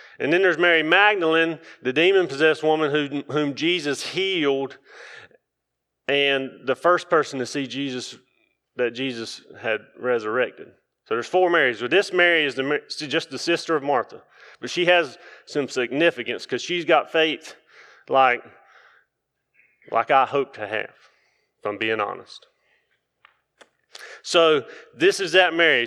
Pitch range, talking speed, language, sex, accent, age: 130-175 Hz, 140 wpm, English, male, American, 30-49